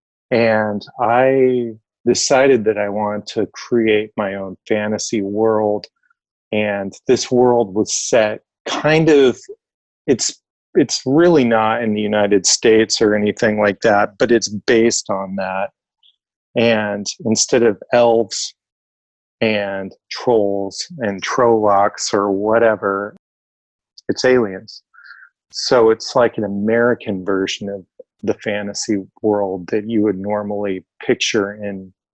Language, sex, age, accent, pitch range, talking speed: English, male, 30-49, American, 100-115 Hz, 120 wpm